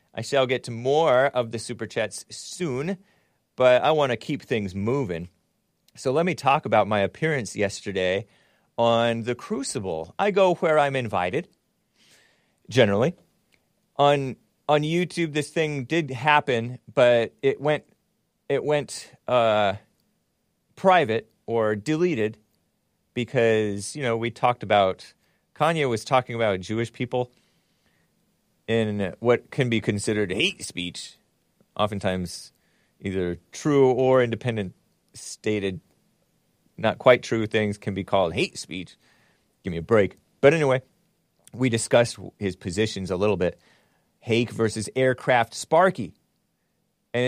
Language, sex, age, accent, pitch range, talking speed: English, male, 30-49, American, 105-145 Hz, 130 wpm